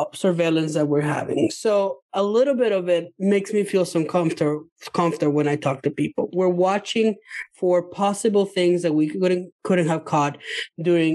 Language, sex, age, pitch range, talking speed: English, male, 20-39, 155-200 Hz, 180 wpm